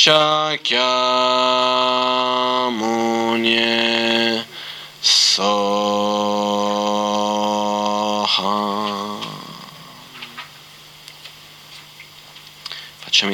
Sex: male